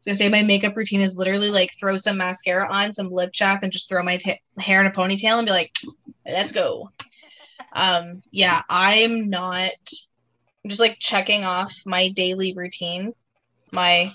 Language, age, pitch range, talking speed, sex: English, 20-39, 180-205 Hz, 175 wpm, female